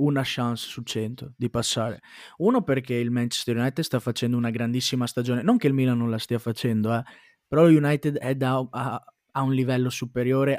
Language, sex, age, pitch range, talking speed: Italian, male, 20-39, 120-135 Hz, 185 wpm